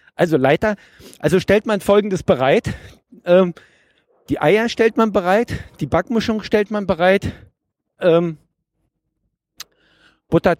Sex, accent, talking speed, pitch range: male, German, 115 wpm, 135-195 Hz